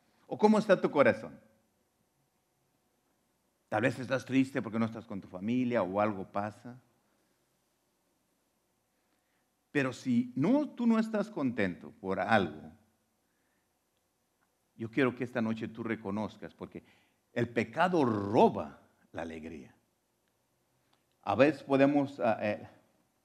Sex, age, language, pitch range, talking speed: male, 50-69, English, 105-165 Hz, 110 wpm